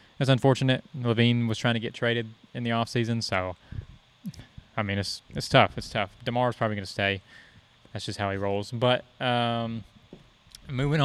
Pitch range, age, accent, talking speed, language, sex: 105-125 Hz, 20-39, American, 175 wpm, English, male